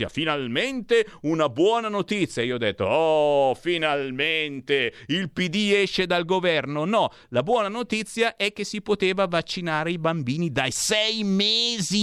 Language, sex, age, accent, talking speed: Italian, male, 50-69, native, 140 wpm